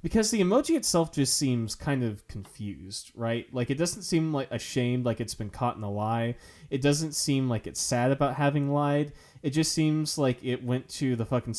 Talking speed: 210 wpm